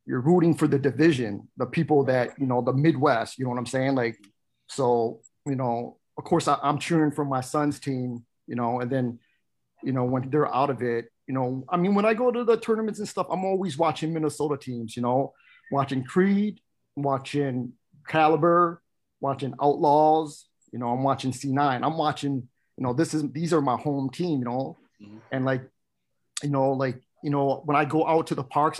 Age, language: 30-49, English